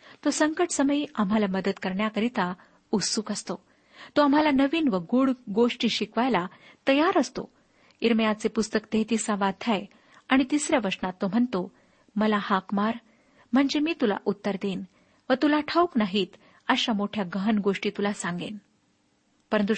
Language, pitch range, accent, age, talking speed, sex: Marathi, 200-265 Hz, native, 50-69, 135 wpm, female